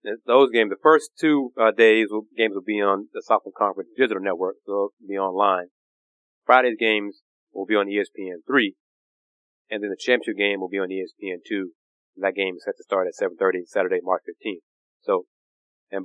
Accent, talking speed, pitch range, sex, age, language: American, 200 wpm, 95-115 Hz, male, 30-49, English